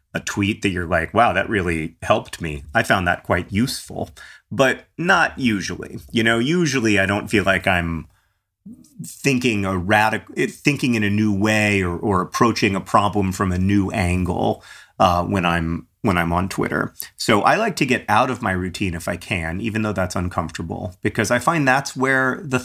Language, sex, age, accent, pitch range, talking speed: English, male, 30-49, American, 95-115 Hz, 190 wpm